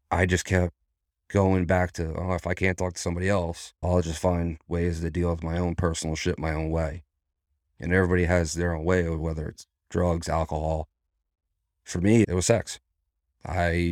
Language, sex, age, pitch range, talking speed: English, male, 30-49, 75-90 Hz, 195 wpm